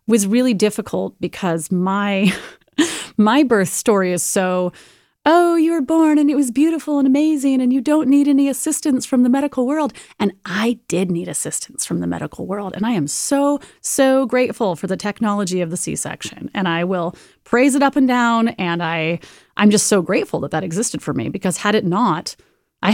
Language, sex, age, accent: English, female, 30-49, American